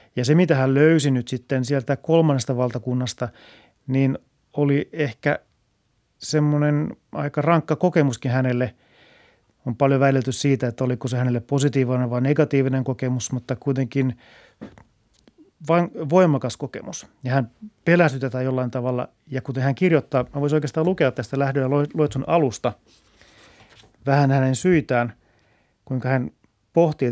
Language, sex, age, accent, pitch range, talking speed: Finnish, male, 30-49, native, 120-150 Hz, 130 wpm